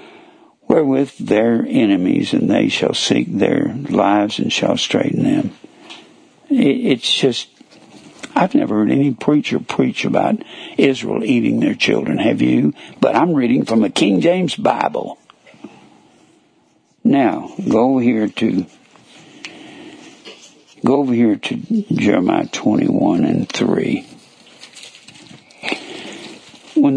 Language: English